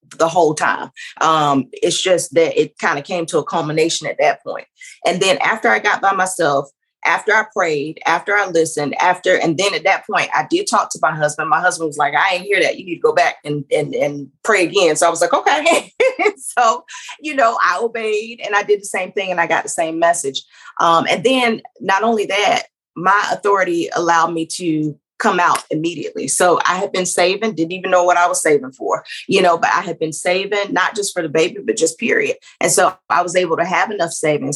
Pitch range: 160-220 Hz